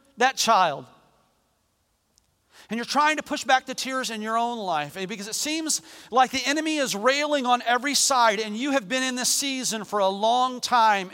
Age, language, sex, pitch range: 40-59, English, male, 170-245 Hz